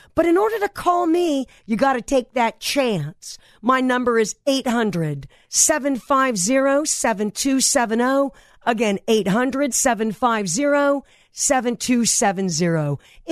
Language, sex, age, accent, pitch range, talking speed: English, female, 50-69, American, 200-280 Hz, 80 wpm